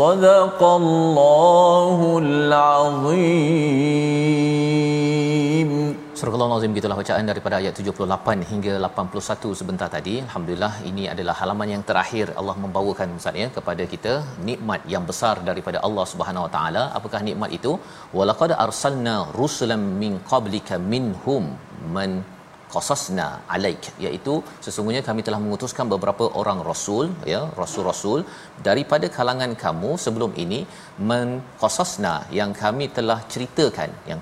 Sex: male